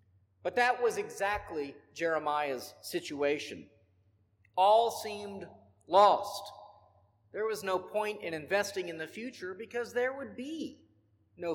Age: 50-69